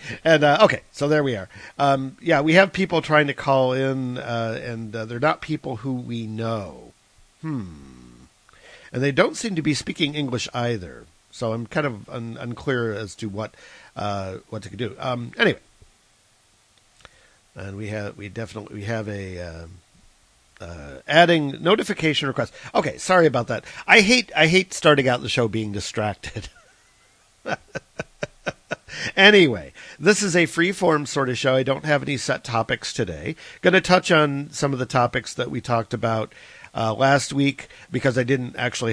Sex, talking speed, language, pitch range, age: male, 175 wpm, English, 105-140 Hz, 50-69